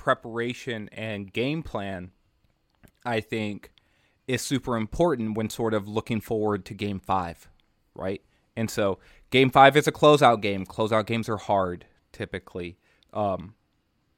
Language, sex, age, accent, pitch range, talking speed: English, male, 20-39, American, 105-120 Hz, 135 wpm